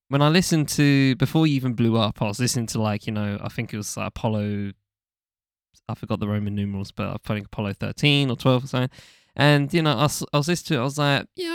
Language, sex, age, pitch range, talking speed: English, male, 10-29, 110-130 Hz, 255 wpm